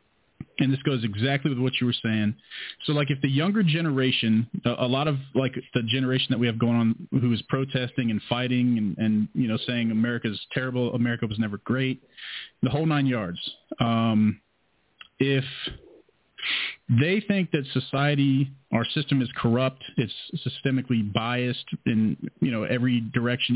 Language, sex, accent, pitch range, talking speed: English, male, American, 115-135 Hz, 165 wpm